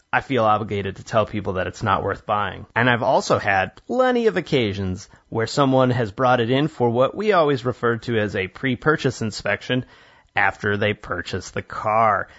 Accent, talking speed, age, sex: American, 190 wpm, 30-49, male